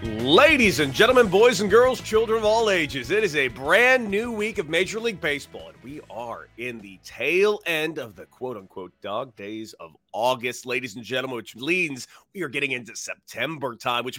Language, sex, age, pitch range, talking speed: English, male, 30-49, 120-200 Hz, 195 wpm